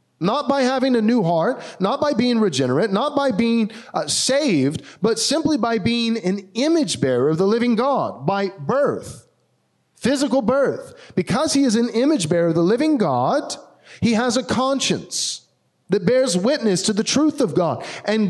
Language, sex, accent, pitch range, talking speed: English, male, American, 200-270 Hz, 175 wpm